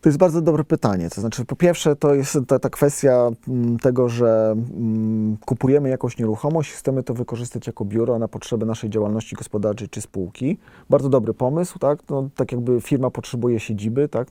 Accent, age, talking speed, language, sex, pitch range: native, 40-59, 170 wpm, Polish, male, 115-145 Hz